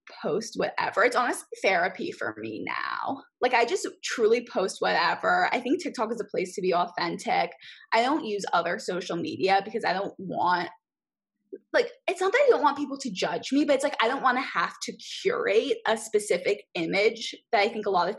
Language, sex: English, female